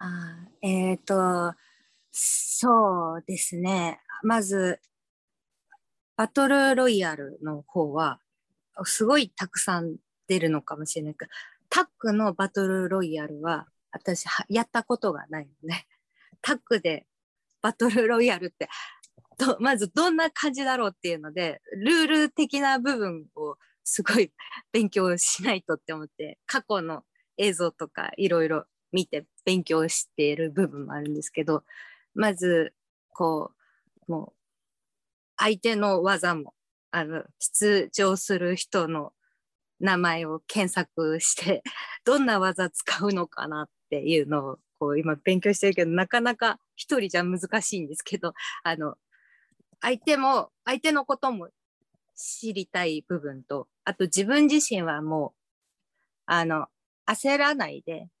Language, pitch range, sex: English, 165-225 Hz, female